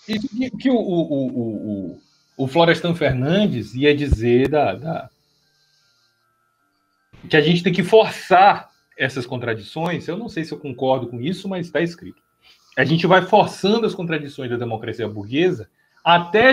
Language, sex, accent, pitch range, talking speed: Portuguese, male, Brazilian, 120-170 Hz, 155 wpm